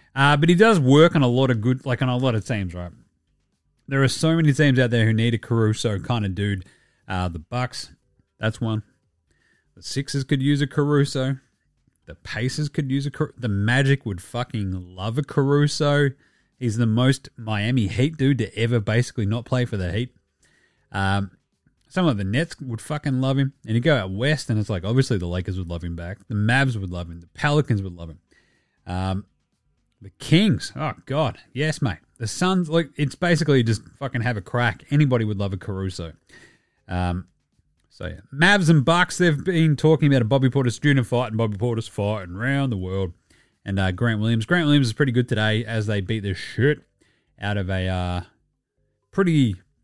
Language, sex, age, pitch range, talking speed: English, male, 30-49, 100-145 Hz, 200 wpm